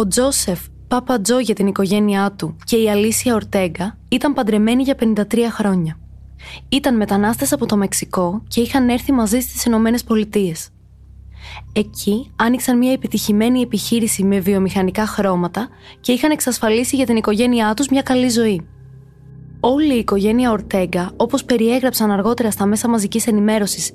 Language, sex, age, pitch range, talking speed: Greek, female, 20-39, 190-245 Hz, 145 wpm